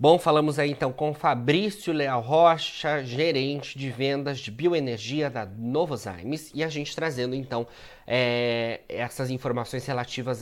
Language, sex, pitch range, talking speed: Portuguese, male, 120-140 Hz, 140 wpm